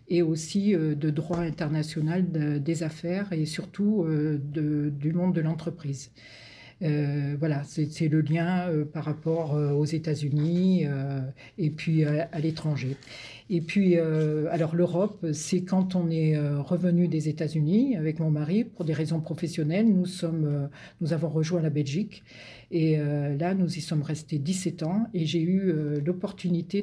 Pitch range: 150-175 Hz